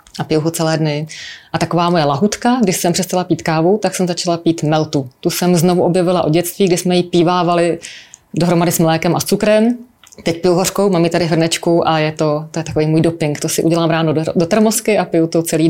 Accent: native